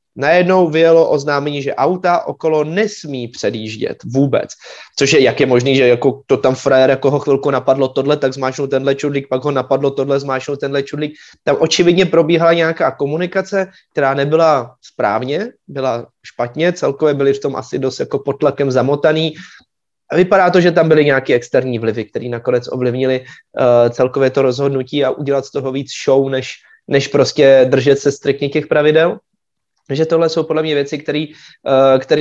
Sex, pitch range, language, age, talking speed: male, 130-150 Hz, Czech, 20-39, 170 wpm